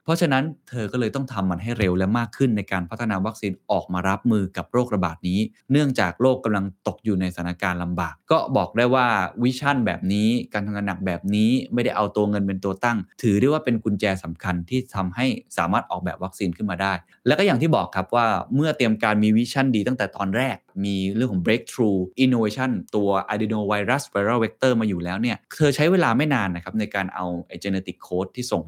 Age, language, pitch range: 20-39, Thai, 95-125 Hz